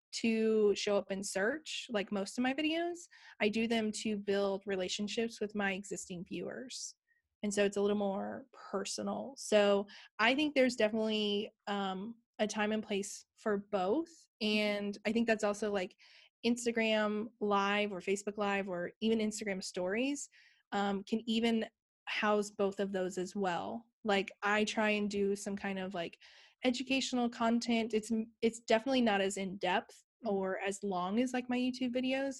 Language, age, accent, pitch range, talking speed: English, 20-39, American, 200-235 Hz, 165 wpm